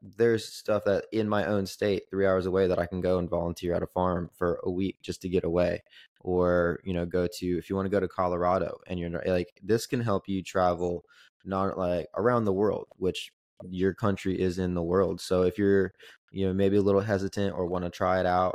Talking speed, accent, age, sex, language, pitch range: 235 wpm, American, 20-39, male, English, 90-100 Hz